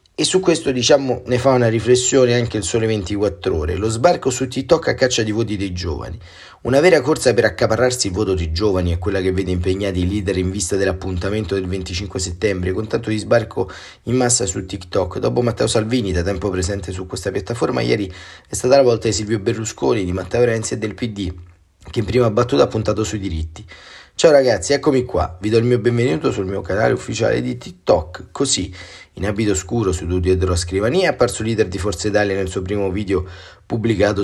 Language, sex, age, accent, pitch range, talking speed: Italian, male, 30-49, native, 90-115 Hz, 205 wpm